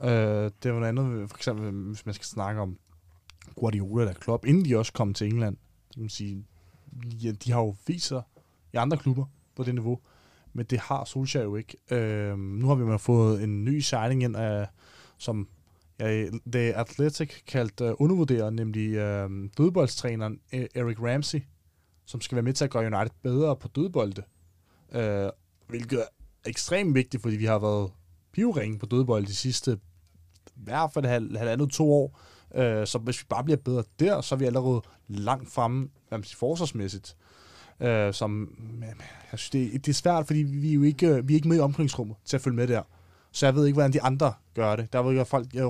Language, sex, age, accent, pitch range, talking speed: Danish, male, 20-39, native, 105-130 Hz, 185 wpm